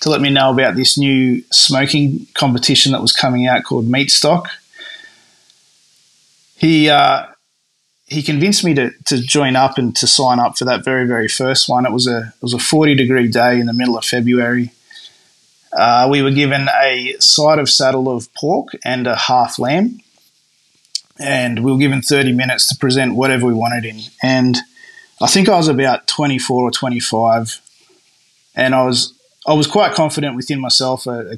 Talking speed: 175 wpm